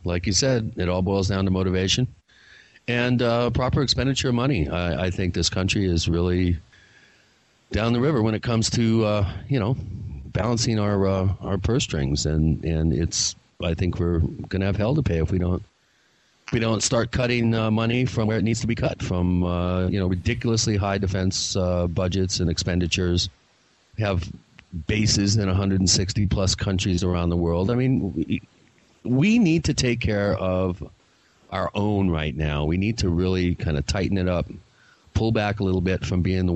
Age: 40-59